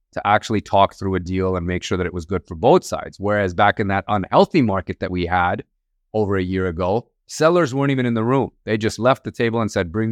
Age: 30-49